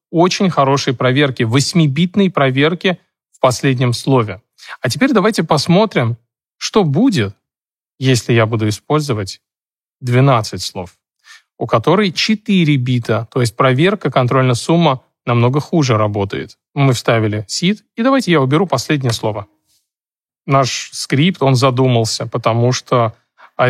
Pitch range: 120-155 Hz